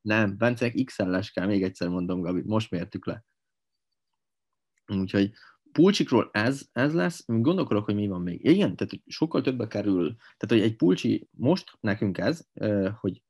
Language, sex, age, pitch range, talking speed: Hungarian, male, 20-39, 95-120 Hz, 160 wpm